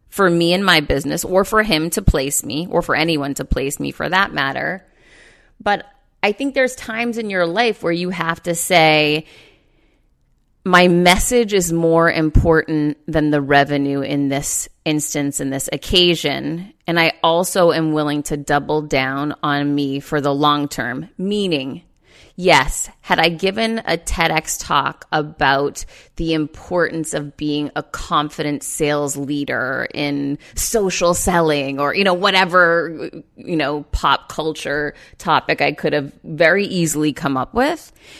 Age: 30-49